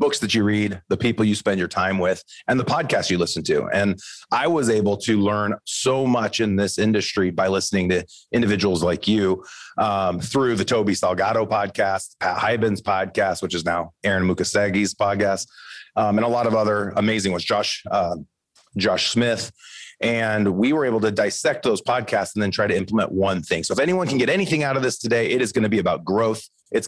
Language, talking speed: English, 210 wpm